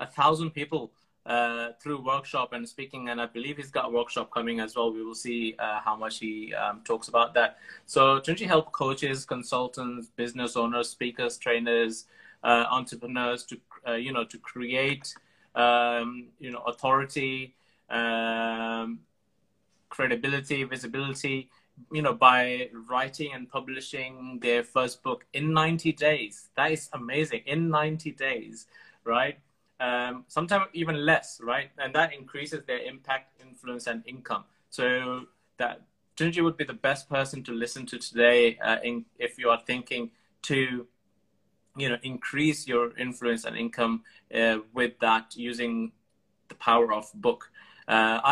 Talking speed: 150 wpm